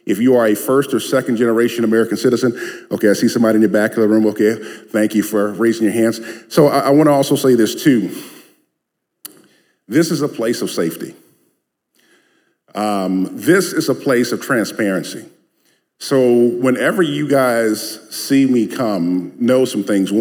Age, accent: 40-59, American